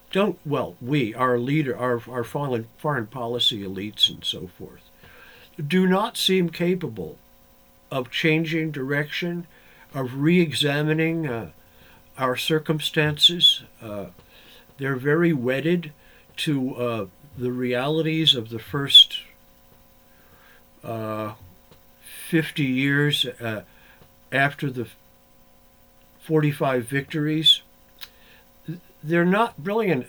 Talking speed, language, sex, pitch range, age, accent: 95 wpm, English, male, 100-155 Hz, 50-69, American